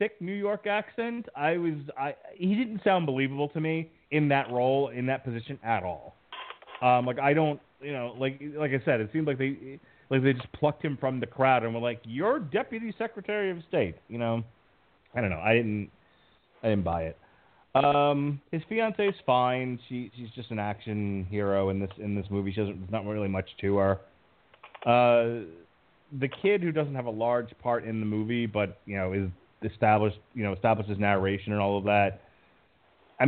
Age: 30-49